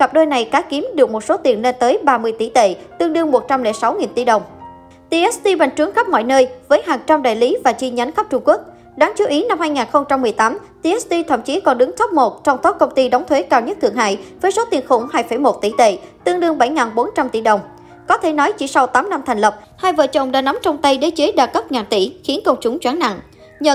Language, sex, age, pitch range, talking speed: Vietnamese, male, 20-39, 240-320 Hz, 250 wpm